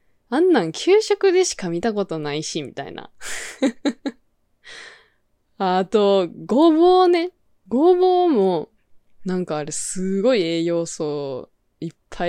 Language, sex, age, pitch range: Japanese, female, 20-39, 170-265 Hz